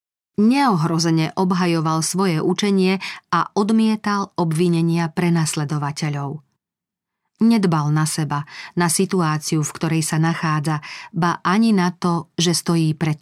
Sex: female